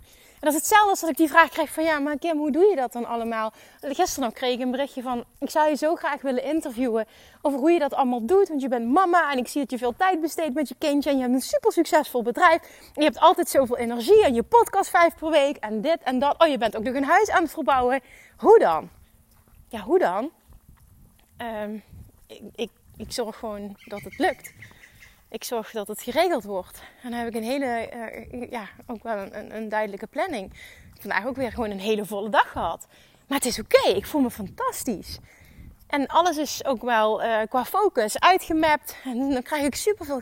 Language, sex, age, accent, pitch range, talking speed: Dutch, female, 30-49, Dutch, 240-320 Hz, 225 wpm